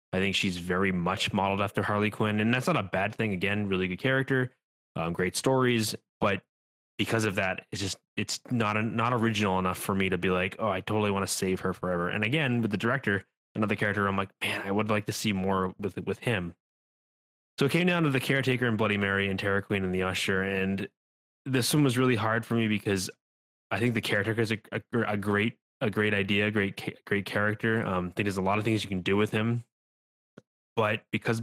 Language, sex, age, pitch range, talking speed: English, male, 20-39, 95-110 Hz, 230 wpm